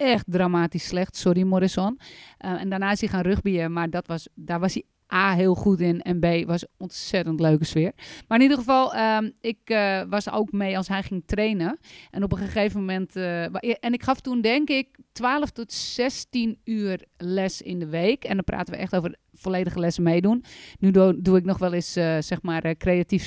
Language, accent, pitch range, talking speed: Dutch, Dutch, 180-245 Hz, 215 wpm